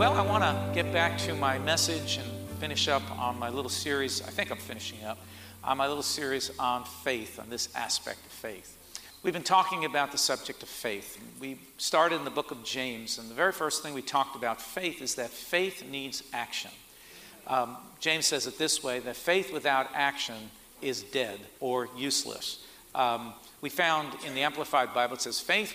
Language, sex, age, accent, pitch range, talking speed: English, male, 50-69, American, 120-145 Hz, 200 wpm